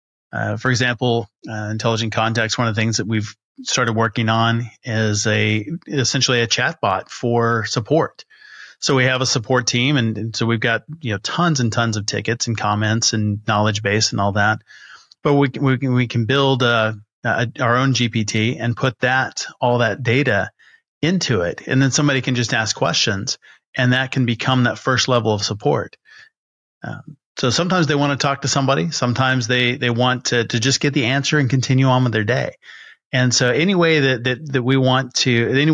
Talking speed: 210 wpm